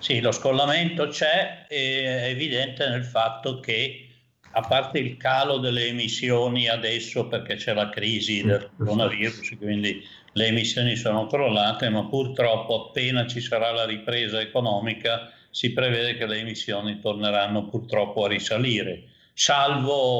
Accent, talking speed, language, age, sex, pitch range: native, 135 wpm, Italian, 60-79, male, 110-130 Hz